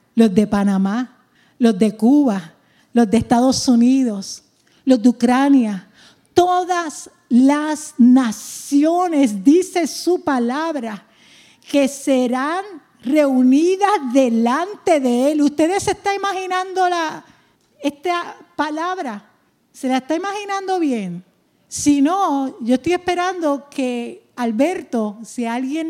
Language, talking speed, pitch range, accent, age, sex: English, 105 wpm, 235-330 Hz, American, 50-69, female